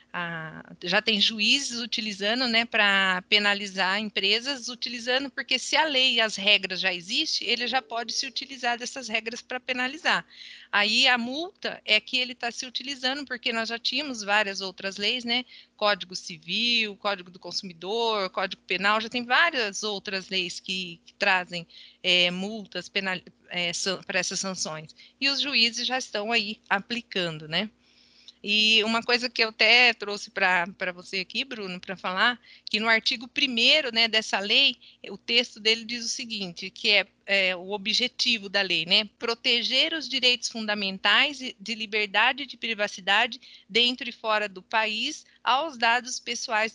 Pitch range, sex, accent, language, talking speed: 200-255 Hz, female, Brazilian, Portuguese, 160 wpm